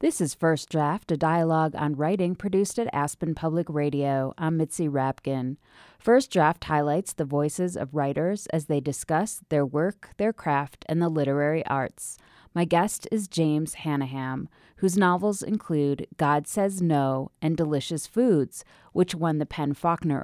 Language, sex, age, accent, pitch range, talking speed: English, female, 30-49, American, 145-175 Hz, 155 wpm